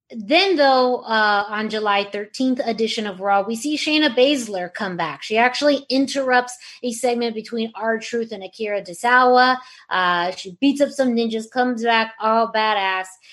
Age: 20-39